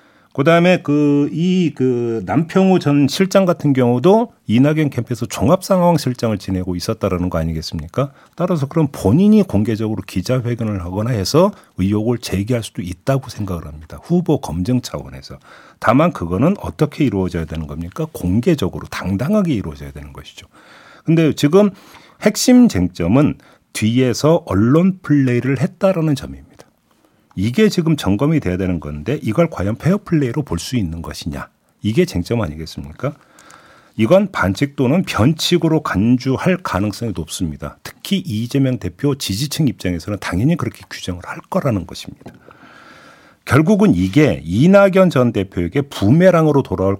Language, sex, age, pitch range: Korean, male, 40-59, 95-160 Hz